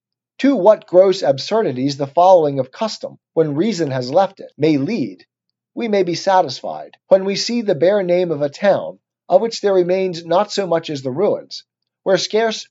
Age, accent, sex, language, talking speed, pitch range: 40-59, American, male, English, 190 wpm, 155-195 Hz